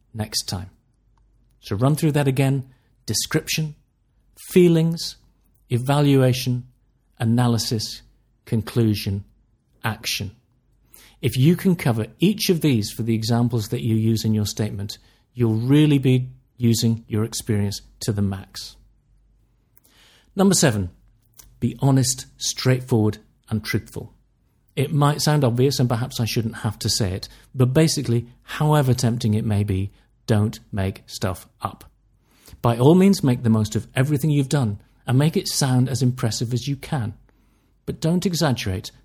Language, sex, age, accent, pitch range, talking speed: English, male, 40-59, British, 110-135 Hz, 140 wpm